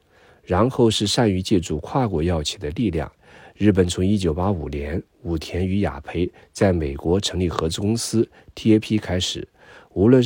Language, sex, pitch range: Chinese, male, 80-105 Hz